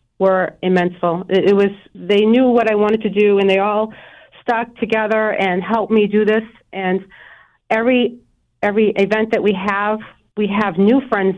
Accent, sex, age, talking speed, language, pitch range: American, female, 40-59, 170 wpm, English, 190-220 Hz